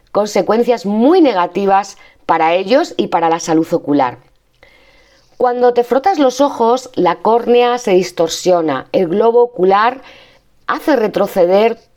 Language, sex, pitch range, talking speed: Spanish, female, 170-225 Hz, 120 wpm